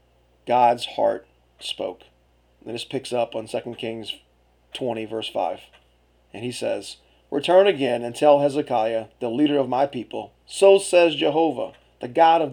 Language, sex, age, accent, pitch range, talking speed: English, male, 30-49, American, 115-160 Hz, 155 wpm